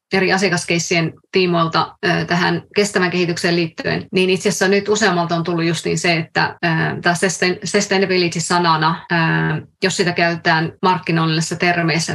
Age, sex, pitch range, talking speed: 30-49, female, 170-190 Hz, 130 wpm